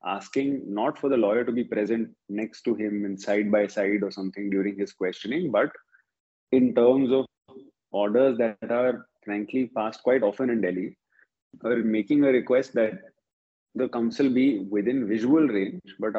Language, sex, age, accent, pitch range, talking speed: English, male, 30-49, Indian, 105-125 Hz, 165 wpm